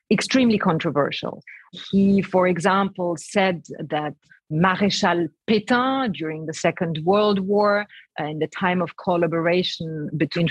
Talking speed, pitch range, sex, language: 115 wpm, 165-205 Hz, female, English